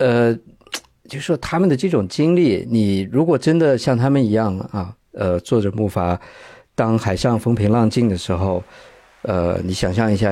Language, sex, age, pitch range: Chinese, male, 50-69, 95-120 Hz